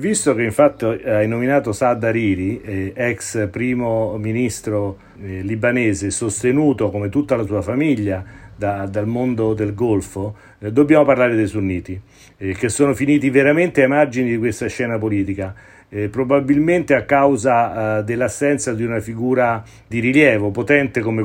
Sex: male